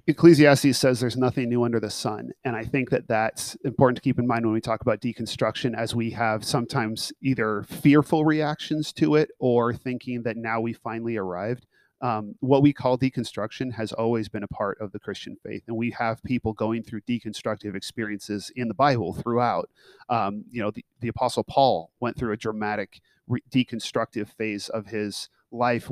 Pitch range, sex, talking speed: 110-125 Hz, male, 190 wpm